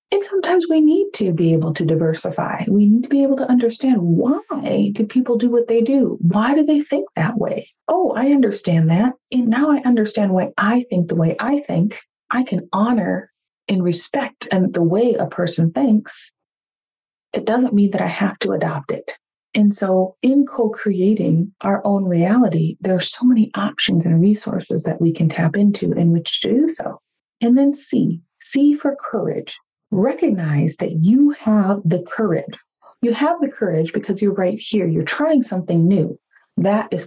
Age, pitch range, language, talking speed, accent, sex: 40-59, 180-245 Hz, English, 185 wpm, American, female